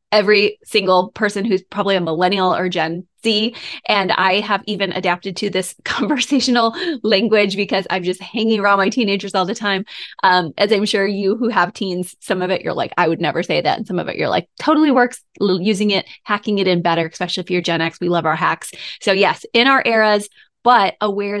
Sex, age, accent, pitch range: female, 20-39, American, 185-235 Hz